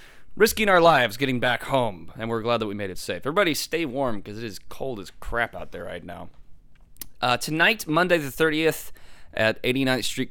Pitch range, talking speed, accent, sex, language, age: 100-135 Hz, 205 wpm, American, male, English, 20-39